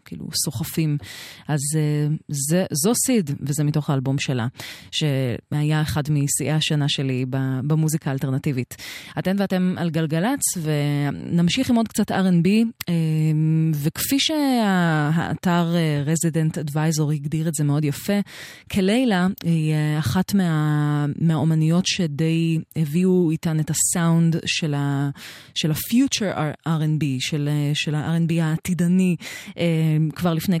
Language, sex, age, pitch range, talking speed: Hebrew, female, 30-49, 150-175 Hz, 110 wpm